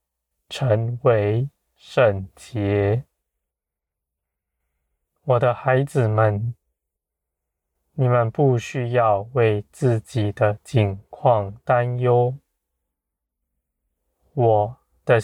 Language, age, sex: Chinese, 20-39, male